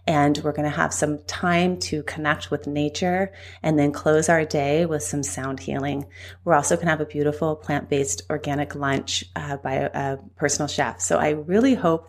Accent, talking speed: American, 200 wpm